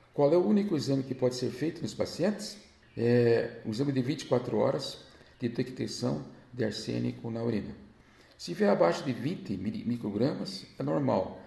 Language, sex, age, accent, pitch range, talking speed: Portuguese, male, 50-69, Brazilian, 100-135 Hz, 160 wpm